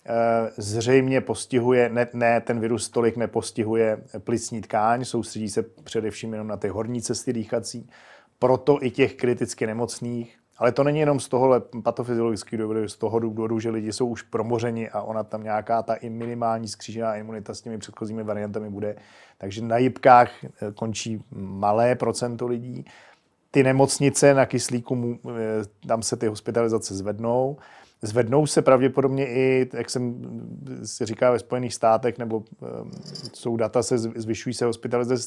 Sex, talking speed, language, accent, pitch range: male, 150 wpm, Czech, native, 110-125 Hz